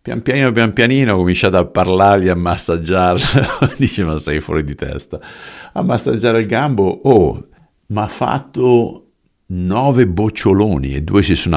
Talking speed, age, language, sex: 155 wpm, 50-69, Italian, male